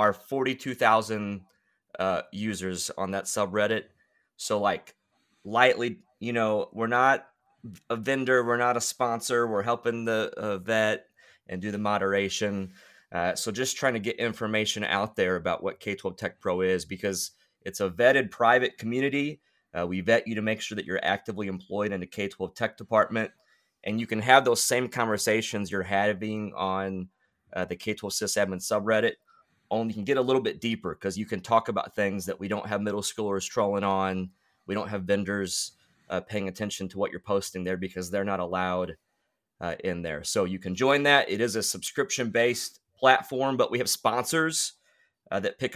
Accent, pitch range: American, 95-115 Hz